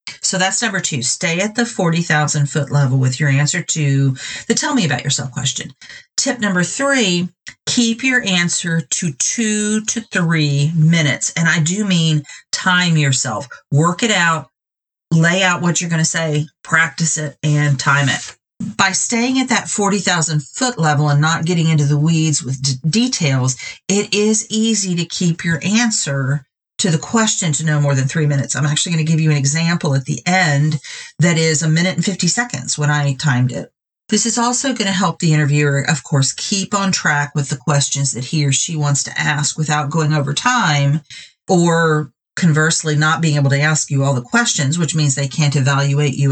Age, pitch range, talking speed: 40-59, 145-190 Hz, 195 wpm